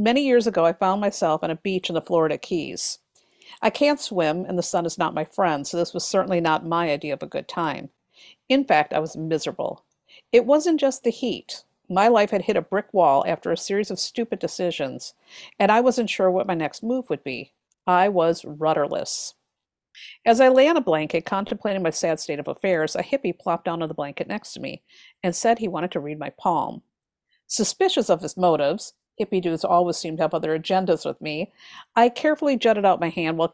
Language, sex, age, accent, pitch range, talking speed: English, female, 50-69, American, 170-235 Hz, 215 wpm